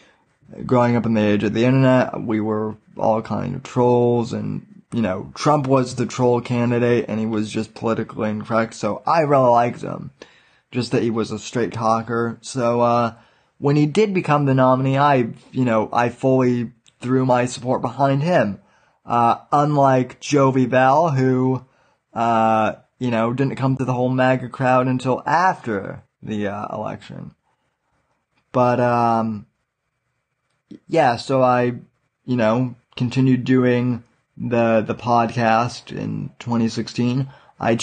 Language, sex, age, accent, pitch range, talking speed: English, male, 20-39, American, 115-130 Hz, 145 wpm